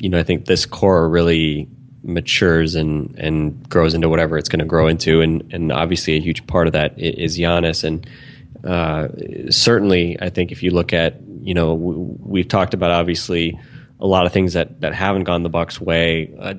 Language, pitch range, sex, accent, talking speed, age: English, 85-100 Hz, male, American, 200 wpm, 20-39